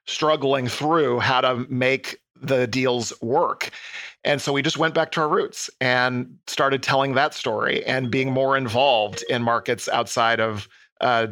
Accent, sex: American, male